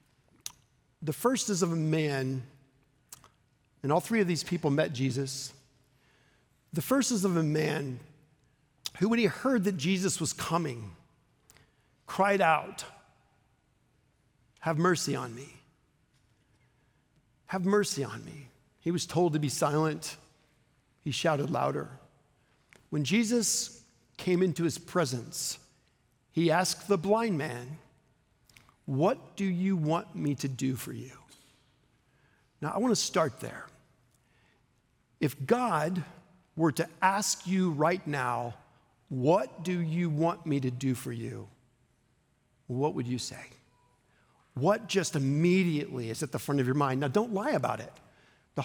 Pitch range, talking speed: 130-180 Hz, 135 wpm